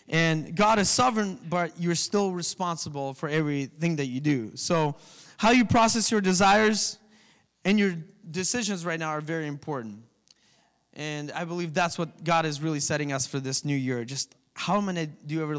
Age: 20-39